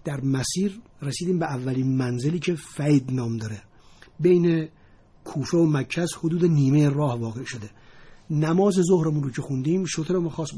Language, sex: Persian, male